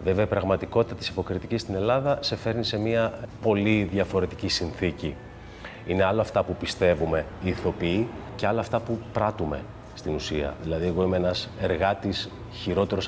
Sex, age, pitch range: male, 30-49, 90-115 Hz